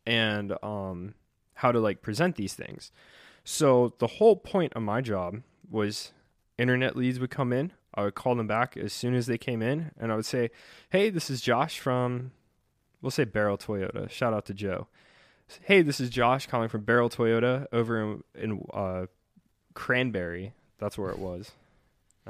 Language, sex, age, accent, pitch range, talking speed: English, male, 20-39, American, 105-135 Hz, 180 wpm